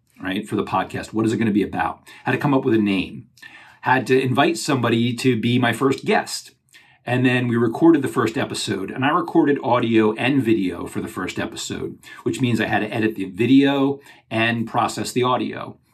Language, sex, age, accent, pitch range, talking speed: English, male, 40-59, American, 110-130 Hz, 210 wpm